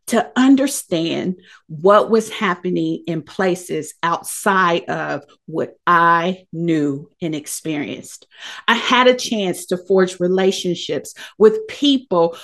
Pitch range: 175-260 Hz